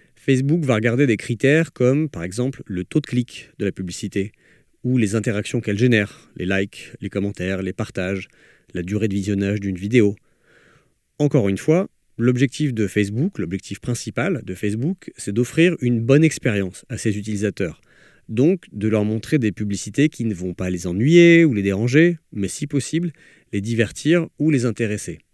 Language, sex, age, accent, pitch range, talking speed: French, male, 40-59, French, 100-135 Hz, 175 wpm